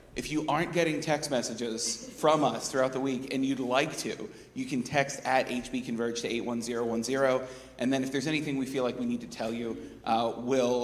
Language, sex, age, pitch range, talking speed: English, male, 30-49, 120-140 Hz, 205 wpm